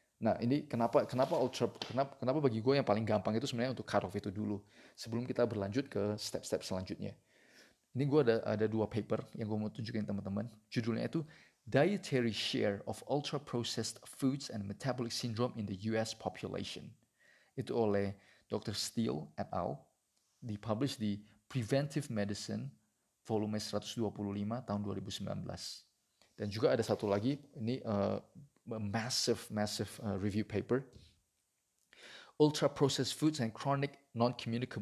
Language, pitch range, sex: Indonesian, 105-130 Hz, male